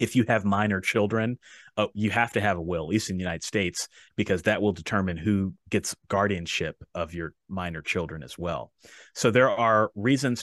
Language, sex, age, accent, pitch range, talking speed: English, male, 30-49, American, 95-115 Hz, 200 wpm